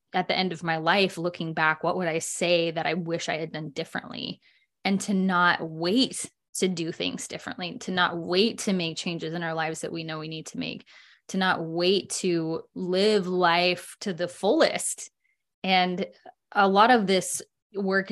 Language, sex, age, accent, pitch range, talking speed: English, female, 20-39, American, 165-195 Hz, 190 wpm